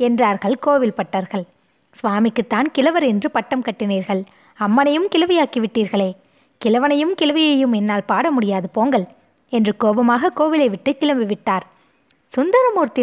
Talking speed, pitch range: 100 wpm, 200-275 Hz